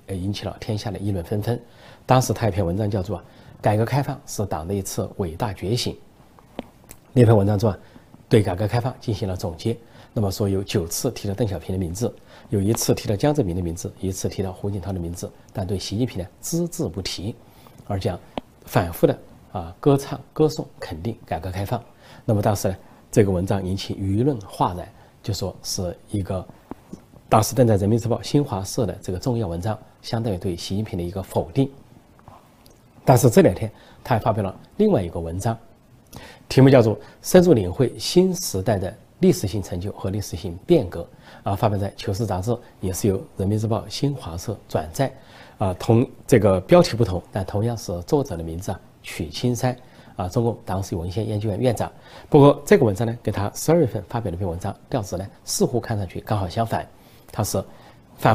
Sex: male